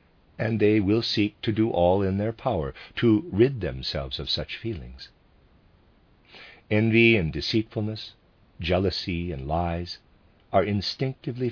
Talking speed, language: 125 wpm, English